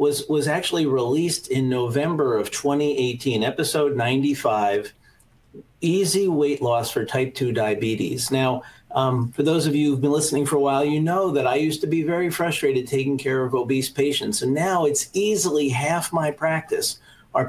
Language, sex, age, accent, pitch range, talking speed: English, male, 50-69, American, 125-150 Hz, 175 wpm